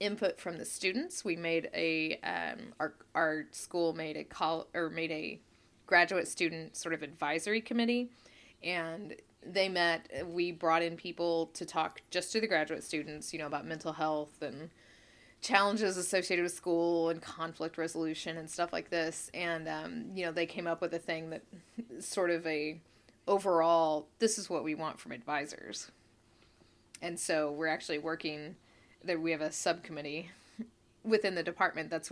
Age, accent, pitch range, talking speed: 20-39, American, 155-185 Hz, 170 wpm